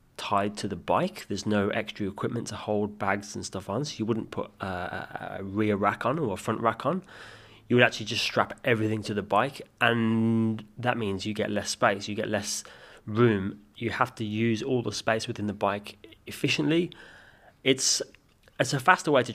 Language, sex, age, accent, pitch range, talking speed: English, male, 20-39, British, 105-125 Hz, 200 wpm